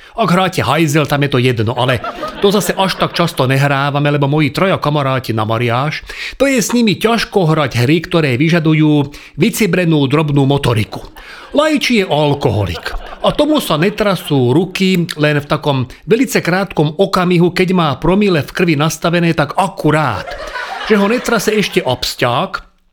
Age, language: 40-59, Czech